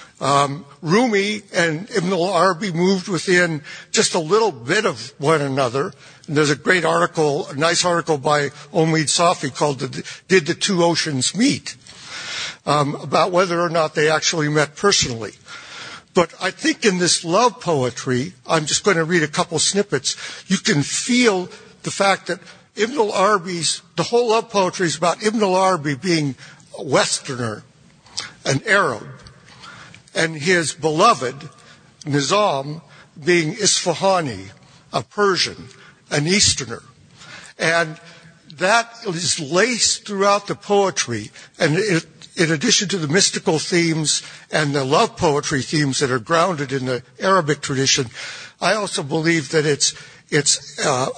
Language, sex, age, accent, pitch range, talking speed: English, male, 60-79, American, 145-185 Hz, 140 wpm